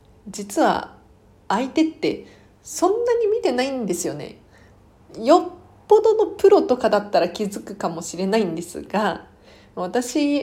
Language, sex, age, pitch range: Japanese, female, 40-59, 185-270 Hz